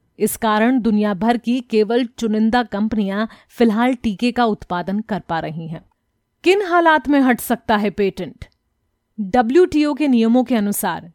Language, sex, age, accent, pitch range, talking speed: Hindi, female, 30-49, native, 195-245 Hz, 150 wpm